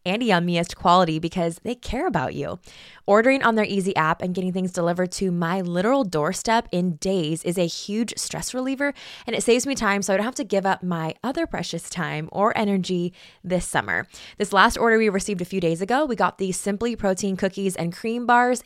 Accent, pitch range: American, 175-230 Hz